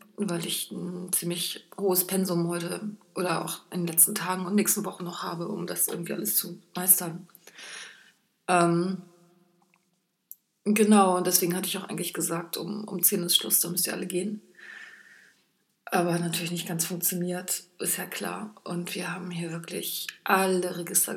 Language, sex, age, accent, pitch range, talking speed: German, female, 30-49, German, 175-200 Hz, 165 wpm